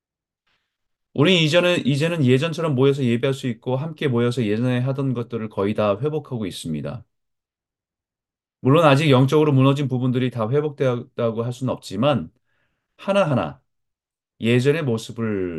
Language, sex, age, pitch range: Korean, male, 30-49, 110-150 Hz